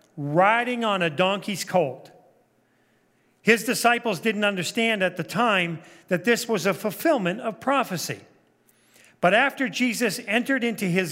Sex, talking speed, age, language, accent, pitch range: male, 135 wpm, 40-59, English, American, 170-215 Hz